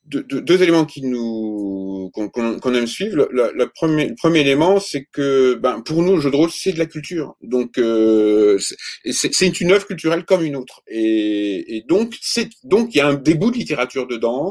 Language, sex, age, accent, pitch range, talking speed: French, male, 40-59, French, 115-170 Hz, 225 wpm